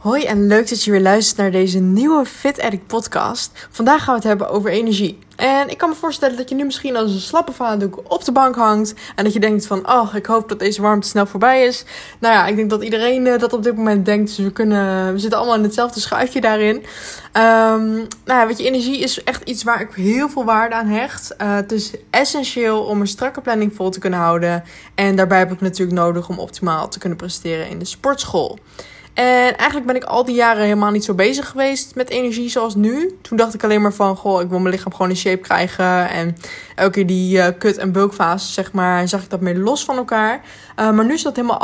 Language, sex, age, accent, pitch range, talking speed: Dutch, female, 20-39, Dutch, 195-245 Hz, 240 wpm